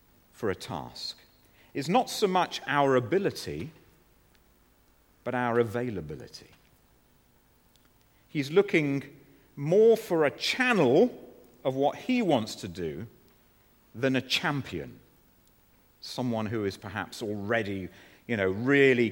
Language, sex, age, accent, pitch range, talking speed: English, male, 40-59, British, 95-140 Hz, 110 wpm